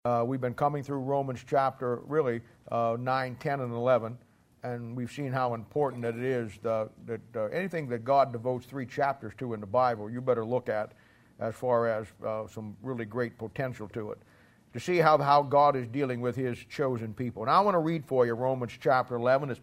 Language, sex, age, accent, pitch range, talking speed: English, male, 50-69, American, 125-160 Hz, 210 wpm